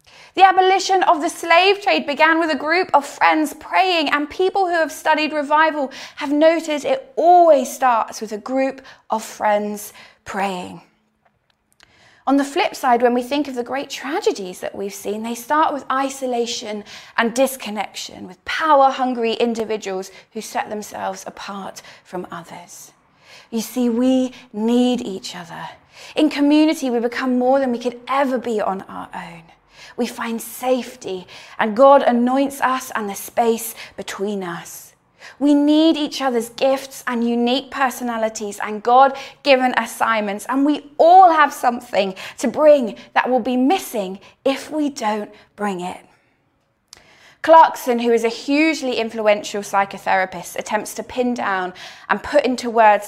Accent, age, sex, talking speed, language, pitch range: British, 20-39, female, 150 wpm, English, 220-290 Hz